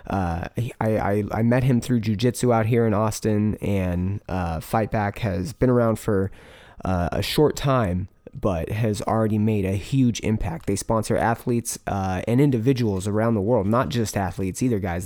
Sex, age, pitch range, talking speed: male, 20-39, 100-115 Hz, 180 wpm